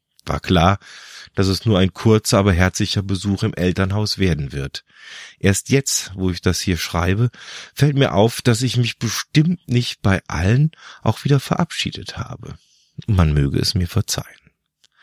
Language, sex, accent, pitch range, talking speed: German, male, German, 85-110 Hz, 160 wpm